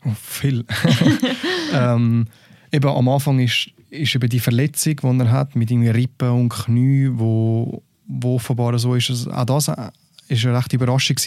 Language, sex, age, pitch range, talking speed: German, male, 20-39, 120-135 Hz, 160 wpm